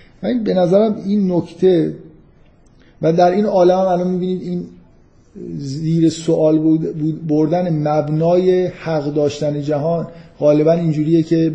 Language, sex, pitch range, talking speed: Persian, male, 145-180 Hz, 135 wpm